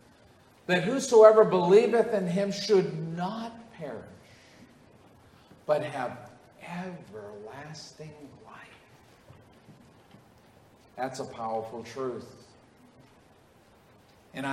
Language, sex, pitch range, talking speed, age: English, male, 135-200 Hz, 70 wpm, 50-69